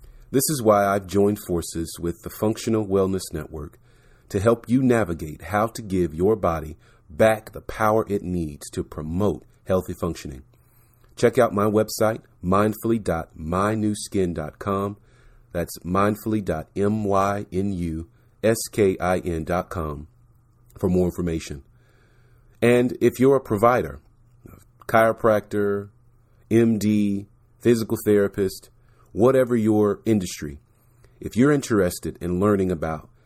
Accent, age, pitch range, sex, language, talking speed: American, 40-59, 90-120 Hz, male, English, 105 wpm